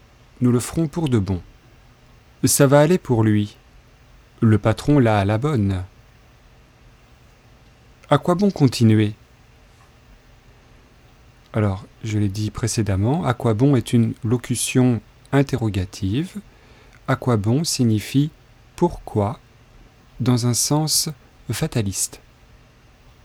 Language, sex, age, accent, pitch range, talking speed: French, male, 40-59, French, 110-130 Hz, 110 wpm